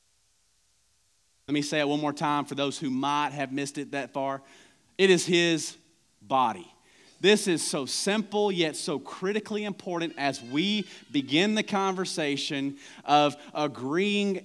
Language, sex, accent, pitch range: English, male, American, 145-190 Hz